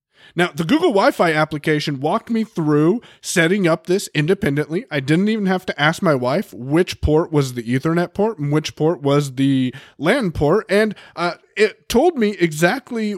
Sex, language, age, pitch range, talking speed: male, English, 30-49, 140-185 Hz, 180 wpm